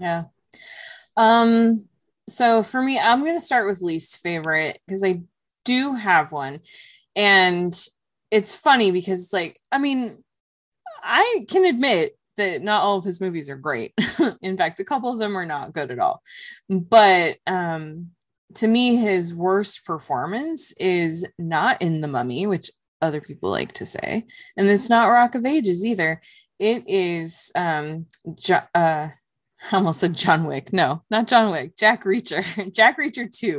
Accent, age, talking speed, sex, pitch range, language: American, 20-39, 160 wpm, female, 165-230 Hz, English